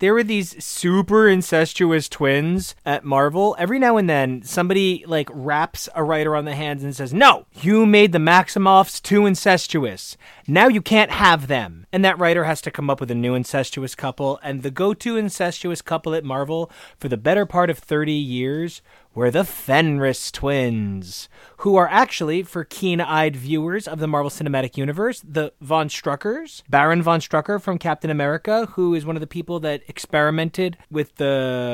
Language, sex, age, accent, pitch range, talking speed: English, male, 30-49, American, 145-200 Hz, 180 wpm